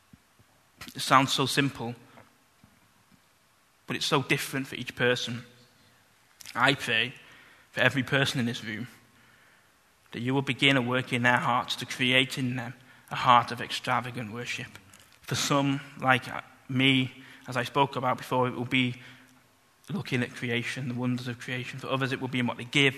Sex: male